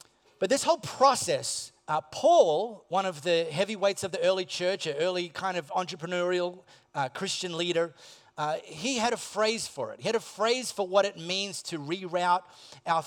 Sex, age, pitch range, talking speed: male, 30-49, 165-215 Hz, 185 wpm